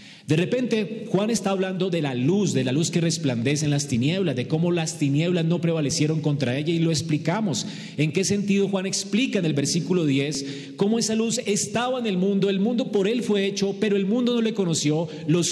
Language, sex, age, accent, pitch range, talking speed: Spanish, male, 40-59, Colombian, 140-195 Hz, 215 wpm